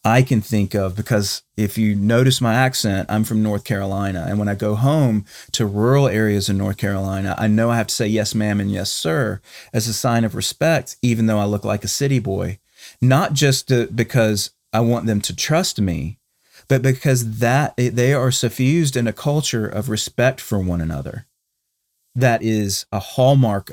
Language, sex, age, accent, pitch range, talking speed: English, male, 40-59, American, 105-135 Hz, 190 wpm